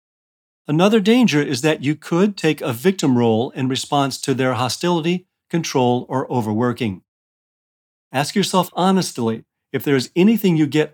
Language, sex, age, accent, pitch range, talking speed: English, male, 40-59, American, 120-165 Hz, 150 wpm